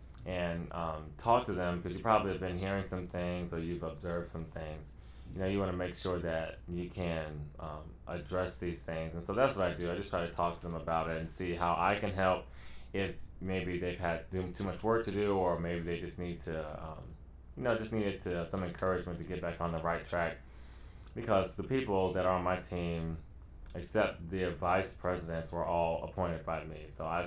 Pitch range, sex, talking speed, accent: 80-95 Hz, male, 220 wpm, American